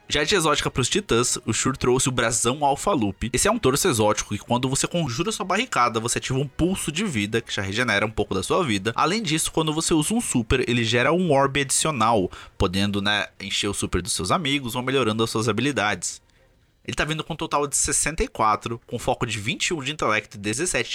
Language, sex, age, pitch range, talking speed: Portuguese, male, 20-39, 110-155 Hz, 225 wpm